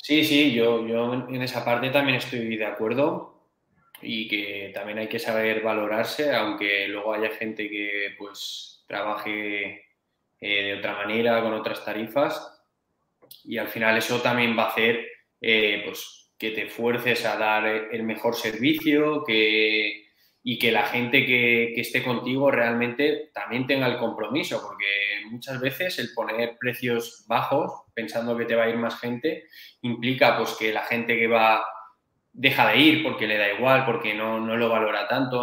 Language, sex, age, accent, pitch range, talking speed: Spanish, male, 20-39, Spanish, 110-125 Hz, 165 wpm